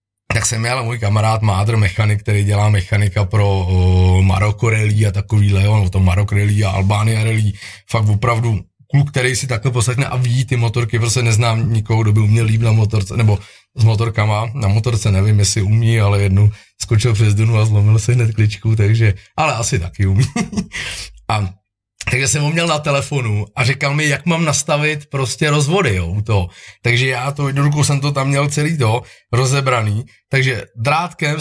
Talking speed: 180 wpm